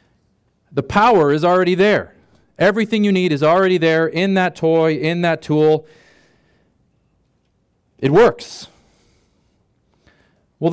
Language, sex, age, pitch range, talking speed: English, male, 40-59, 150-180 Hz, 110 wpm